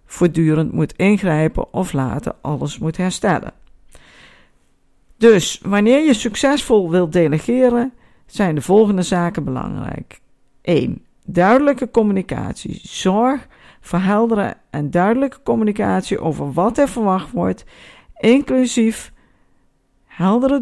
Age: 50-69